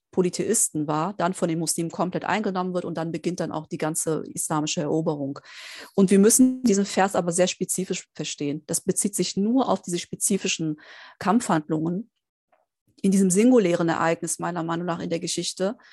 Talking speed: 170 wpm